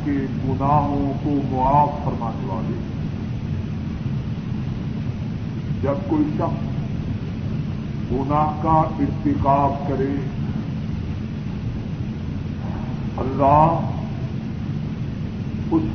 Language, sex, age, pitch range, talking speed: Urdu, female, 50-69, 140-165 Hz, 55 wpm